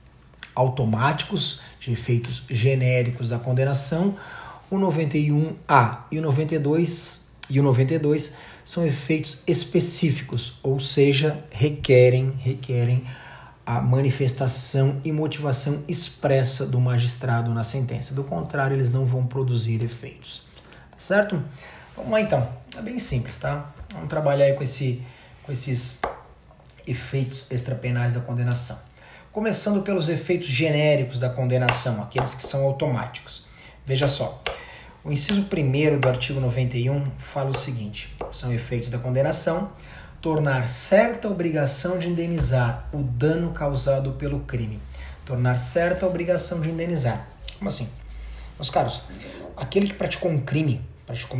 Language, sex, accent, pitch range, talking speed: Portuguese, male, Brazilian, 125-155 Hz, 125 wpm